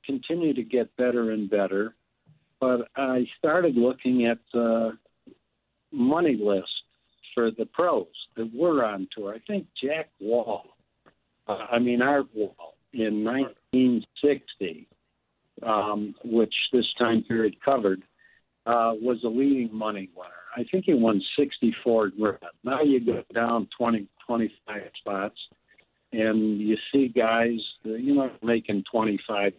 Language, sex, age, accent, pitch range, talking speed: English, male, 60-79, American, 110-130 Hz, 135 wpm